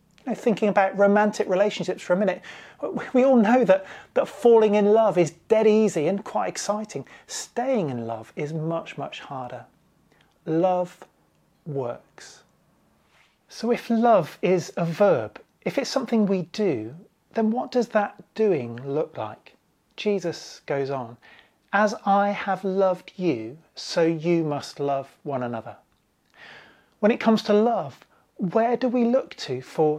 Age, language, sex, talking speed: 30-49, English, male, 145 wpm